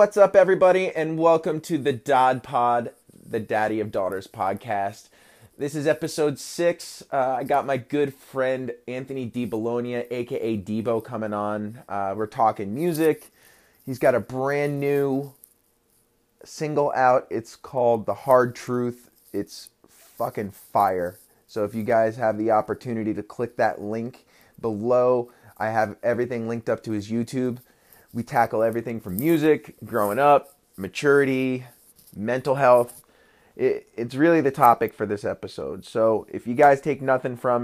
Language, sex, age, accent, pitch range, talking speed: English, male, 20-39, American, 110-140 Hz, 150 wpm